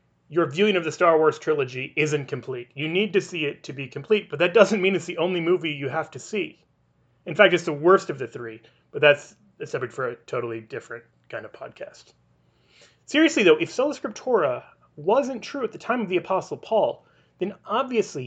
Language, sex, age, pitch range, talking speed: English, male, 30-49, 130-210 Hz, 205 wpm